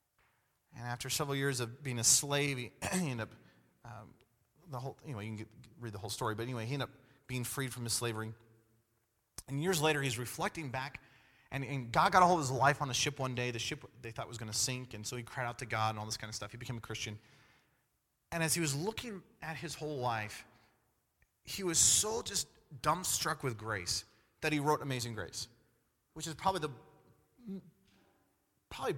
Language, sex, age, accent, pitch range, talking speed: English, male, 30-49, American, 115-165 Hz, 215 wpm